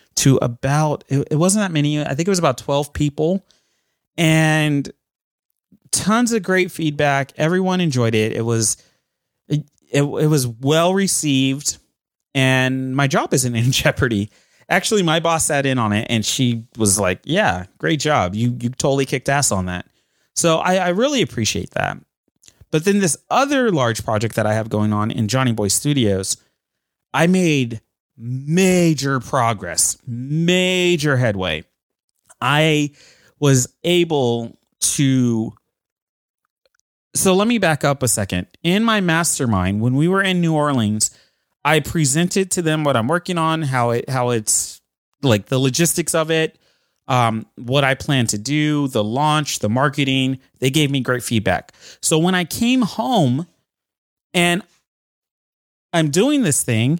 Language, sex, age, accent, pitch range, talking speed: English, male, 30-49, American, 120-165 Hz, 150 wpm